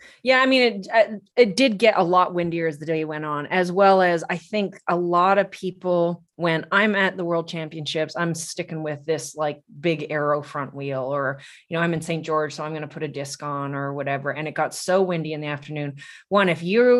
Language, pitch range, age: English, 150-185 Hz, 30-49